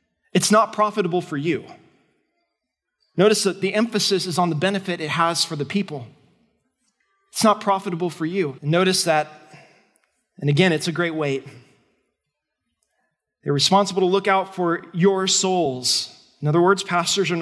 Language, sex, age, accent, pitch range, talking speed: English, male, 20-39, American, 155-195 Hz, 150 wpm